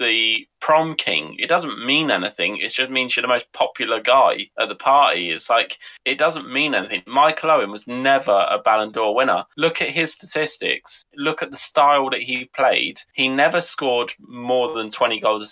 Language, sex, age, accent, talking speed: English, male, 20-39, British, 195 wpm